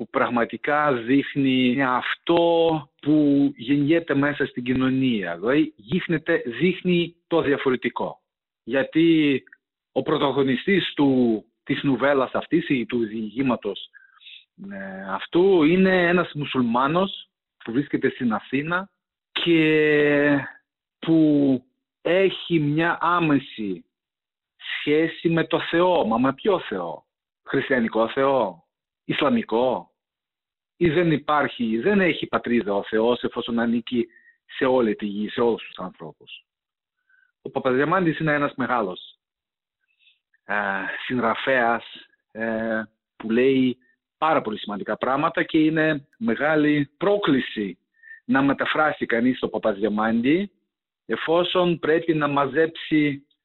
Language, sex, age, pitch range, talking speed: Greek, male, 40-59, 130-175 Hz, 105 wpm